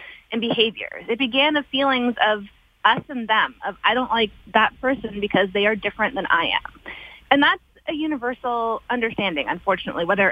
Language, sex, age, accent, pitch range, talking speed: English, female, 20-39, American, 205-260 Hz, 170 wpm